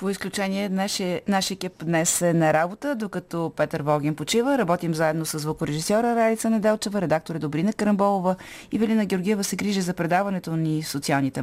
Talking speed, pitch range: 185 wpm, 155-205 Hz